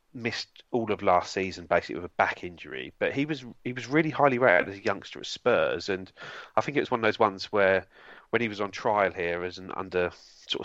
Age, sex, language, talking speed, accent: 30-49, male, English, 240 wpm, British